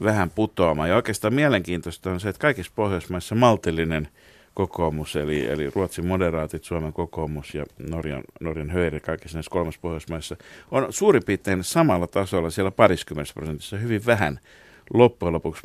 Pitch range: 80-105 Hz